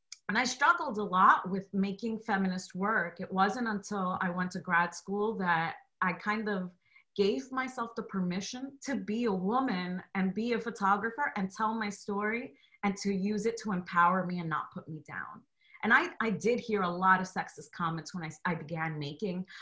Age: 30-49